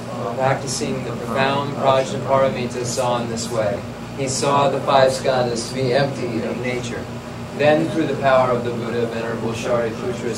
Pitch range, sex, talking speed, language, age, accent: 120-130 Hz, male, 155 wpm, English, 30-49, American